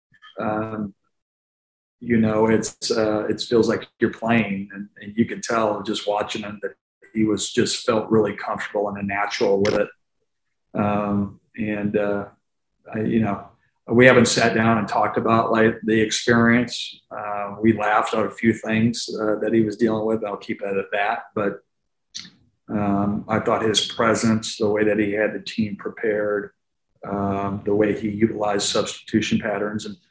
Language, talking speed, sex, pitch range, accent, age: English, 165 wpm, male, 100-110 Hz, American, 40-59